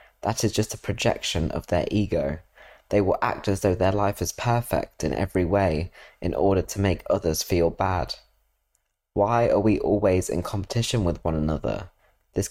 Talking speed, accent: 175 wpm, British